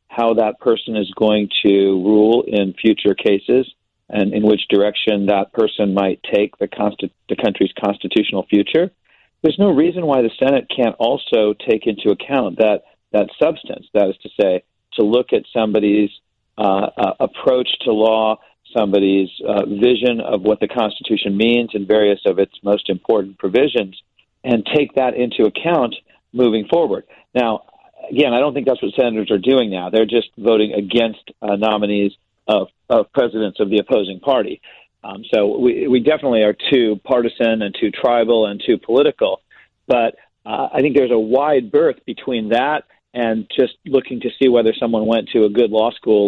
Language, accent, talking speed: English, American, 175 wpm